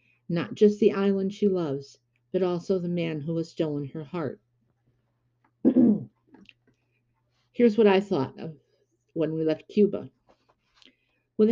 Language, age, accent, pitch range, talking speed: English, 50-69, American, 150-205 Hz, 130 wpm